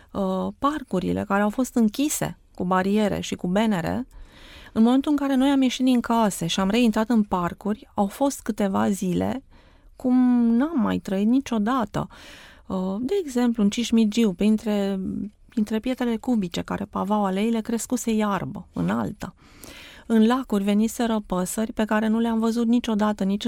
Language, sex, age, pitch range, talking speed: Romanian, female, 30-49, 190-230 Hz, 155 wpm